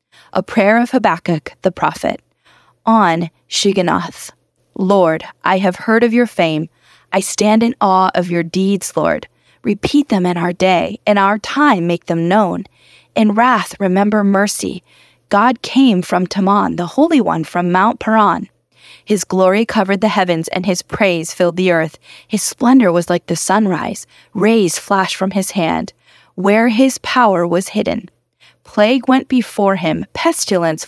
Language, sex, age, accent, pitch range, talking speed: English, female, 20-39, American, 180-225 Hz, 155 wpm